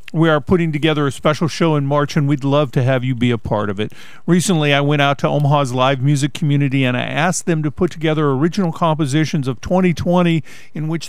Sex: male